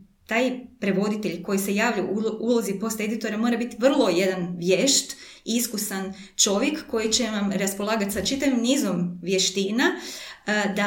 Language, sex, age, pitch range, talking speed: Croatian, female, 20-39, 190-240 Hz, 130 wpm